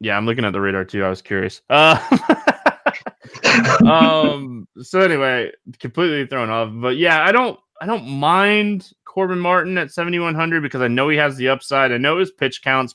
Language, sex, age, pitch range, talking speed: English, male, 20-39, 115-145 Hz, 185 wpm